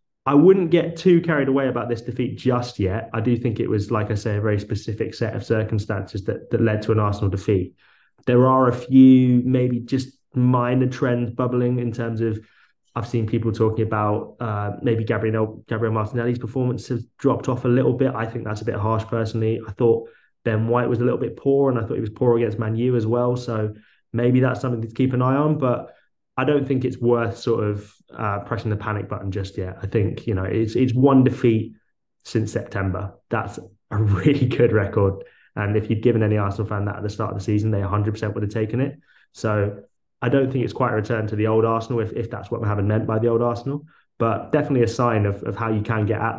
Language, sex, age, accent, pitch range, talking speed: English, male, 20-39, British, 105-125 Hz, 235 wpm